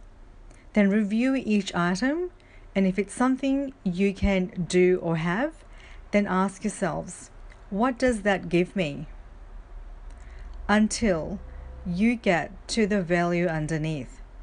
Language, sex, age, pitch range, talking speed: English, female, 40-59, 150-215 Hz, 115 wpm